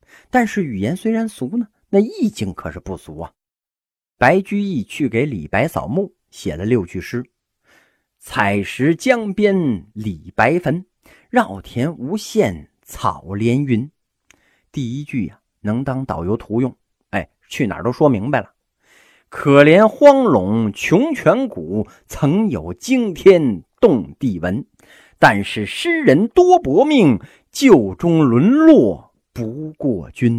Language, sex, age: Chinese, male, 50-69